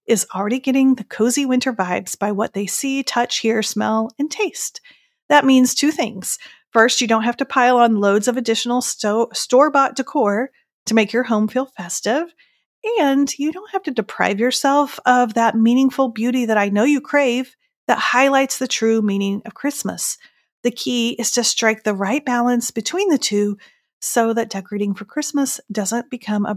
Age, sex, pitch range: 40-59, female, 210-275 Hz